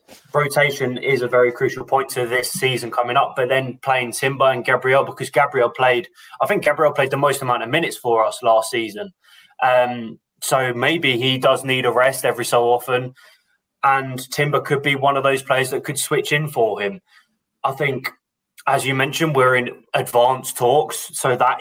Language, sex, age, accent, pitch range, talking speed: English, male, 20-39, British, 125-145 Hz, 190 wpm